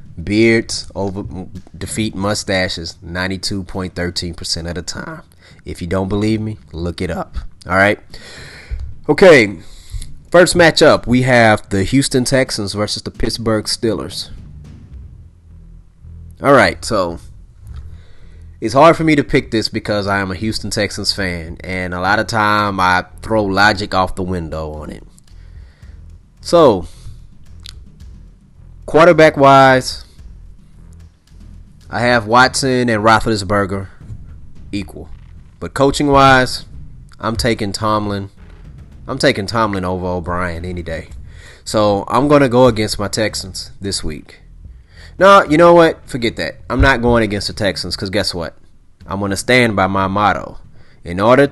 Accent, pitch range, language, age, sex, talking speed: American, 85-115 Hz, English, 30-49, male, 135 wpm